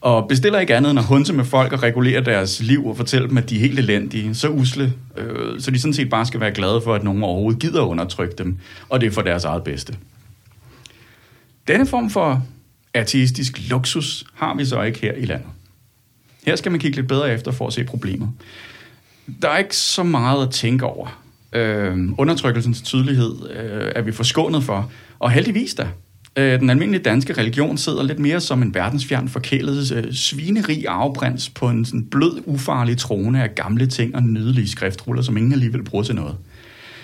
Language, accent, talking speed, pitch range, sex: Danish, native, 190 wpm, 115-135 Hz, male